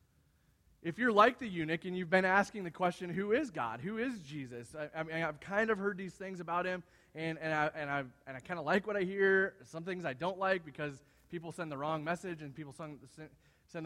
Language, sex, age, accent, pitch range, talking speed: English, male, 20-39, American, 150-195 Hz, 240 wpm